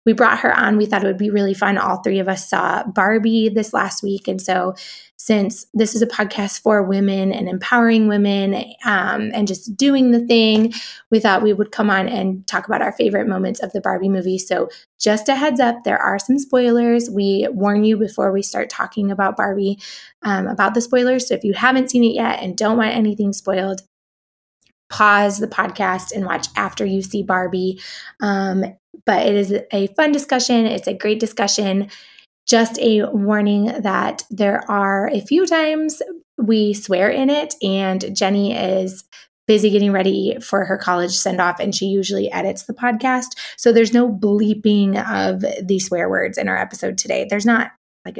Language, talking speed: English, 190 wpm